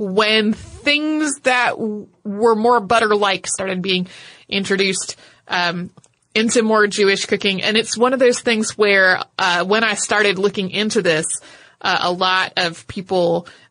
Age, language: 30-49, English